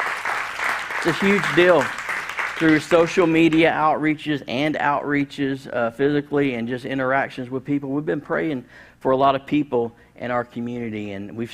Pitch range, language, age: 115-150 Hz, English, 50-69